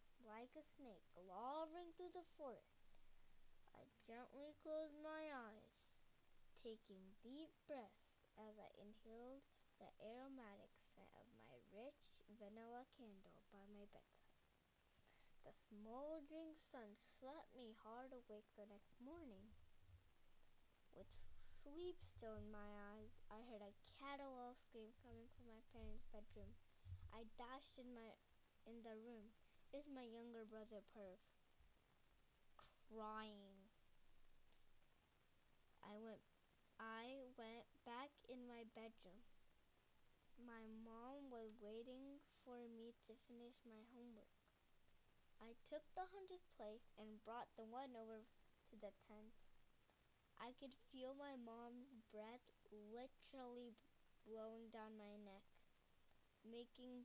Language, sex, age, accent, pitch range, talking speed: English, female, 10-29, American, 210-255 Hz, 120 wpm